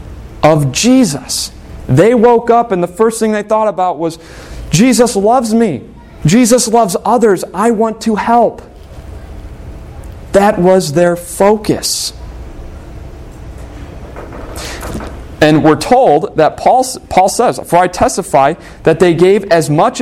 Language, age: English, 40-59